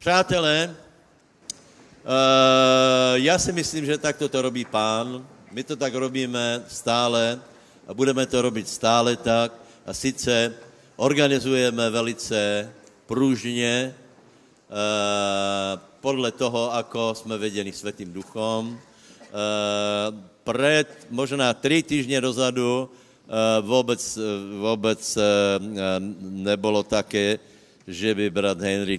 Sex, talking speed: male, 95 wpm